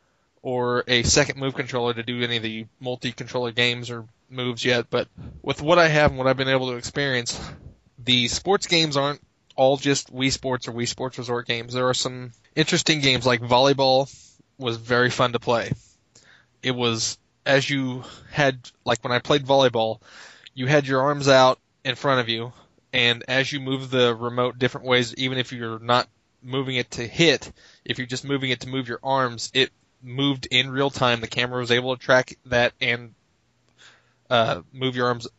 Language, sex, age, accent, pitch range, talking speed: English, male, 20-39, American, 120-135 Hz, 190 wpm